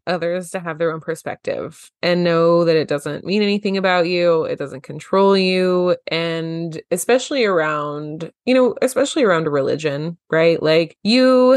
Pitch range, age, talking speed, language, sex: 155-195 Hz, 20-39, 160 wpm, English, female